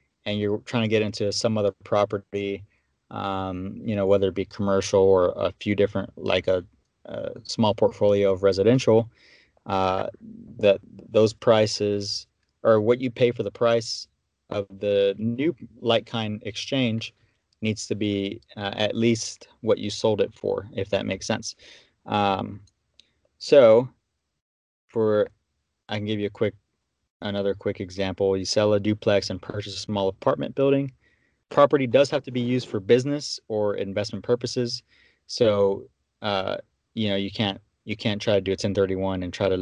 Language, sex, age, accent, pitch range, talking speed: English, male, 30-49, American, 100-115 Hz, 165 wpm